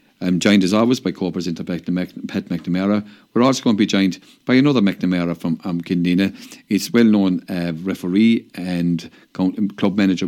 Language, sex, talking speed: English, male, 175 wpm